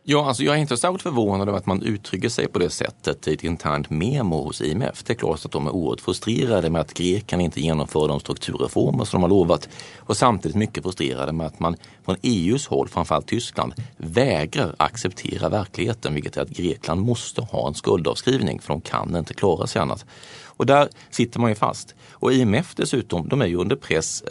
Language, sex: Swedish, male